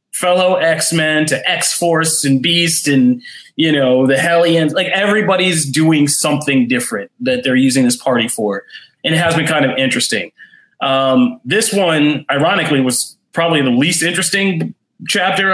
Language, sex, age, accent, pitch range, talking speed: English, male, 30-49, American, 135-175 Hz, 150 wpm